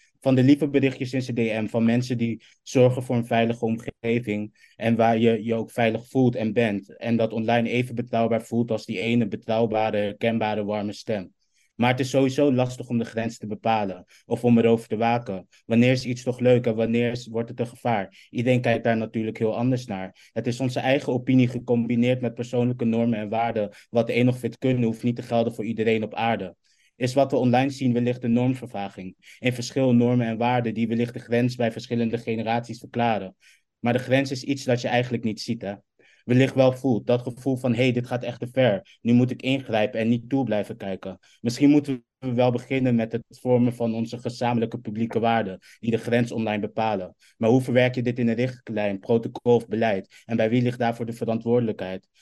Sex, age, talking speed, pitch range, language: male, 20-39, 210 wpm, 115-125 Hz, English